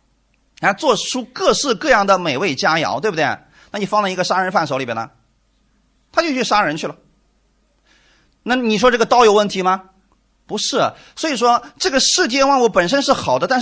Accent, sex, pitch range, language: native, male, 150-215 Hz, Chinese